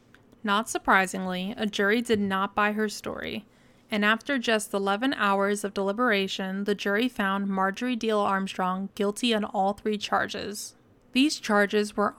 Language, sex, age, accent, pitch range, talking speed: English, female, 20-39, American, 195-225 Hz, 150 wpm